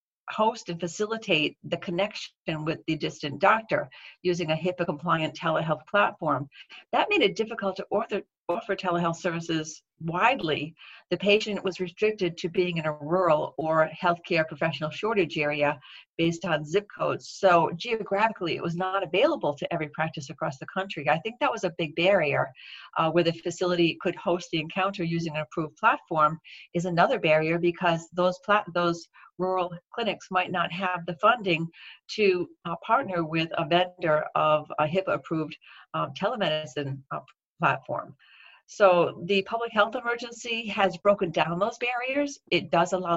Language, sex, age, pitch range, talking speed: English, female, 50-69, 165-195 Hz, 160 wpm